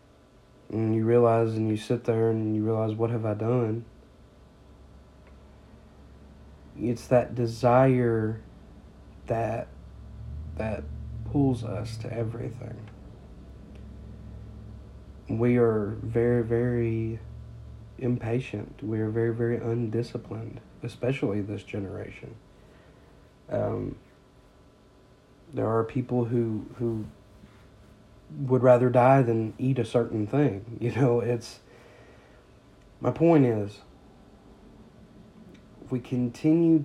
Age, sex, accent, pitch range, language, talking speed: 40-59, male, American, 105-125 Hz, English, 95 wpm